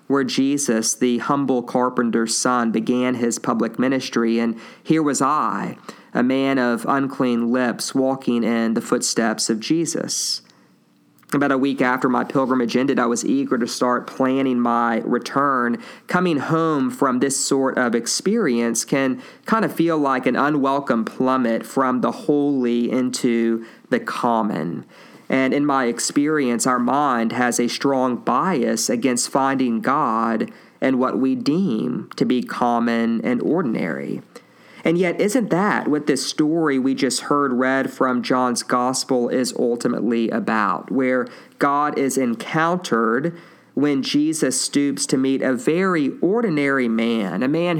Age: 40-59